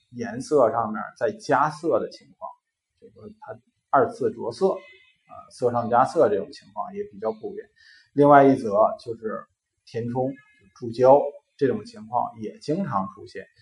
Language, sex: Chinese, male